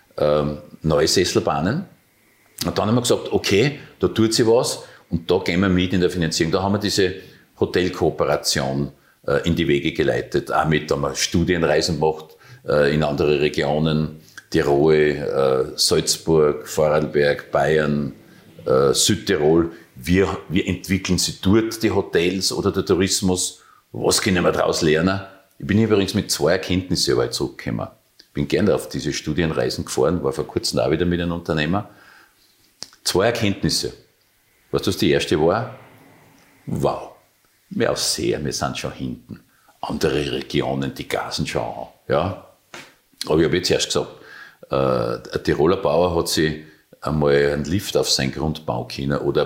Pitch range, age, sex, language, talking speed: 75-100 Hz, 50-69, male, German, 145 wpm